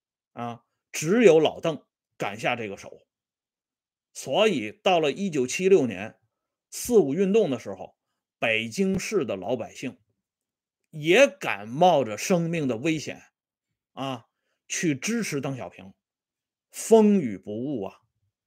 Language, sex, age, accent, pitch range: Swedish, male, 30-49, Chinese, 120-195 Hz